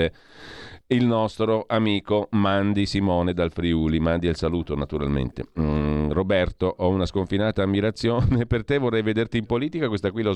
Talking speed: 150 wpm